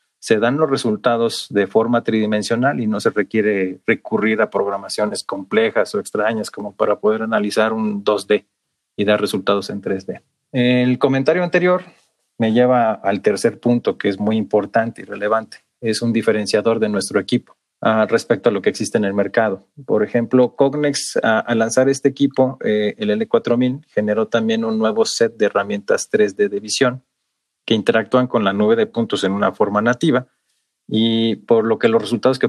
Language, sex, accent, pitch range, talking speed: Spanish, male, Mexican, 105-125 Hz, 170 wpm